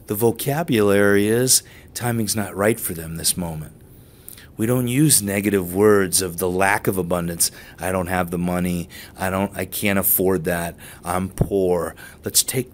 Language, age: English, 30-49